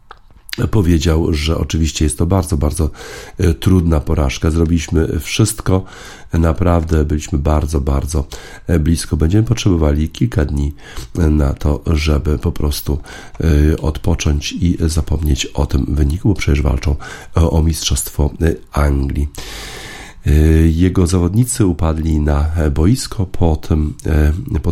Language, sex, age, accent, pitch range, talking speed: Polish, male, 40-59, native, 75-85 Hz, 110 wpm